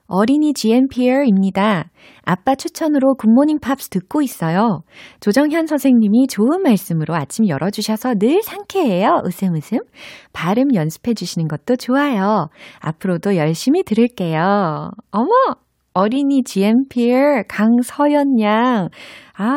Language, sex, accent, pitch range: Korean, female, native, 155-245 Hz